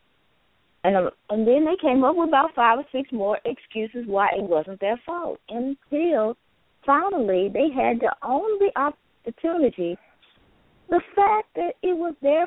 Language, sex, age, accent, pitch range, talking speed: English, female, 20-39, American, 195-280 Hz, 150 wpm